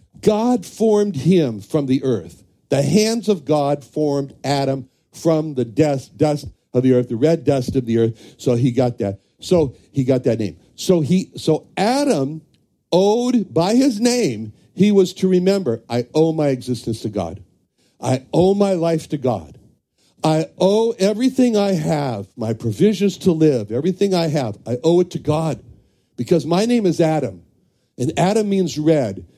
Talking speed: 170 wpm